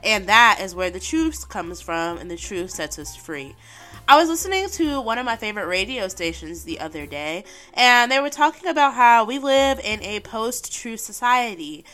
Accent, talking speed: American, 195 wpm